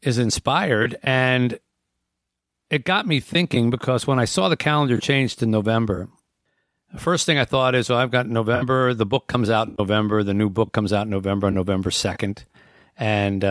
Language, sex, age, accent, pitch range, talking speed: English, male, 50-69, American, 105-135 Hz, 190 wpm